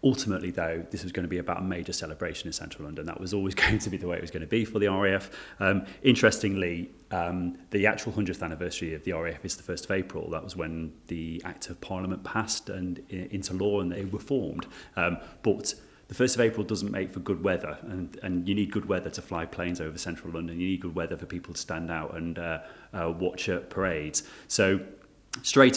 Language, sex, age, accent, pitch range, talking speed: English, male, 30-49, British, 85-100 Hz, 235 wpm